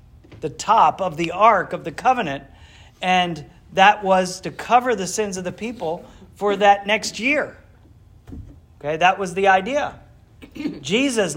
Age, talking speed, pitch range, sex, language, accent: 40-59, 150 wpm, 170-245 Hz, male, English, American